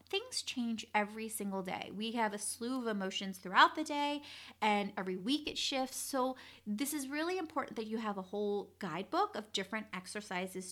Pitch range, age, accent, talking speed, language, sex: 185-240 Hz, 30-49, American, 185 wpm, English, female